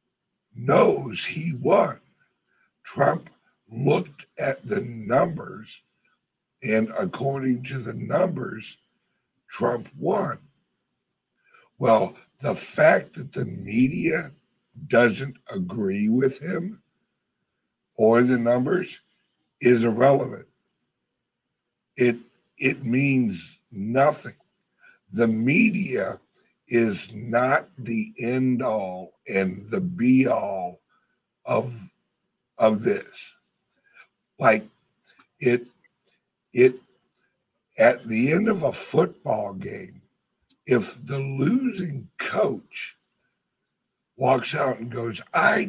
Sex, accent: male, American